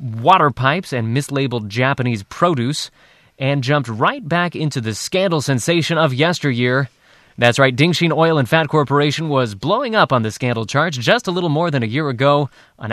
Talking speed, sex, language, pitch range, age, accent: 180 wpm, male, English, 125-155 Hz, 20-39, American